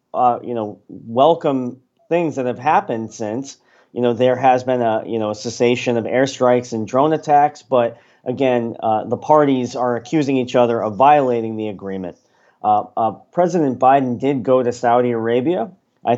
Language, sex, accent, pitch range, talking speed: English, male, American, 115-135 Hz, 175 wpm